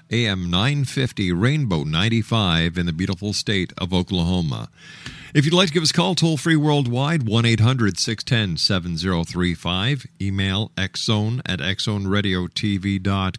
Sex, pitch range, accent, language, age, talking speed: male, 95-150 Hz, American, English, 50-69, 165 wpm